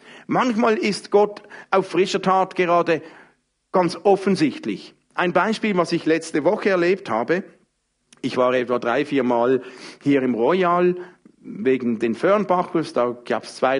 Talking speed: 145 wpm